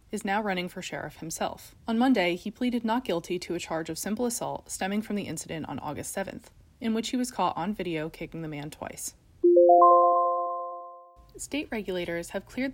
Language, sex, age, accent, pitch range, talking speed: English, female, 20-39, American, 170-230 Hz, 190 wpm